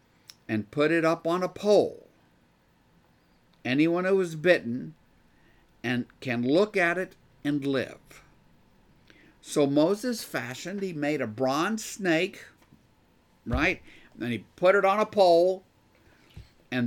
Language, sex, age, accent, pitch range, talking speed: English, male, 50-69, American, 120-175 Hz, 130 wpm